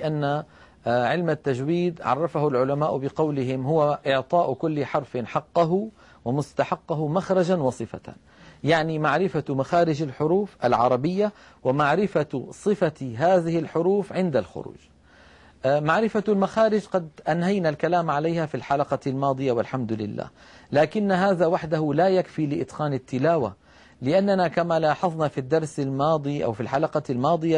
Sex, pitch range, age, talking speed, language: male, 145-185 Hz, 40-59, 115 wpm, Arabic